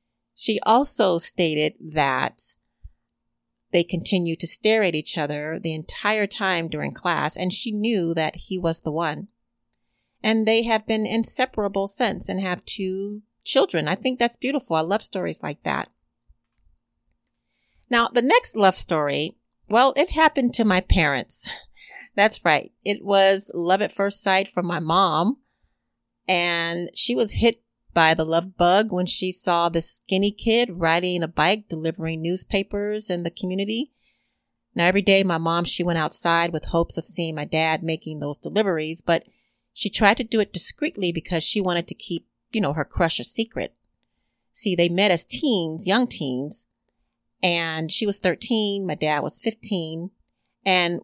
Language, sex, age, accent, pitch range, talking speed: English, female, 40-59, American, 165-215 Hz, 160 wpm